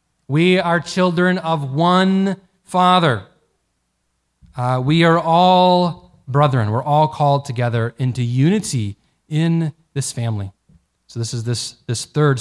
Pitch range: 120-170 Hz